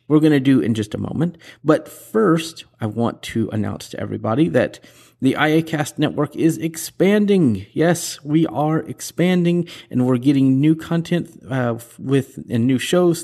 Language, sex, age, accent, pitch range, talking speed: English, male, 30-49, American, 120-160 Hz, 165 wpm